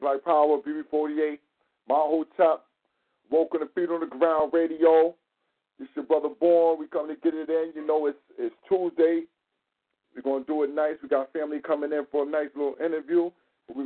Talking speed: 195 wpm